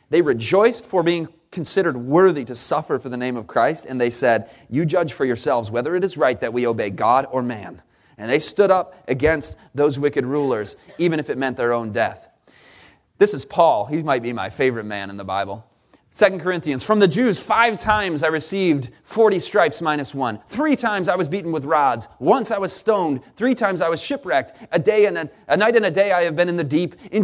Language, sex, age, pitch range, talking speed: English, male, 30-49, 135-195 Hz, 220 wpm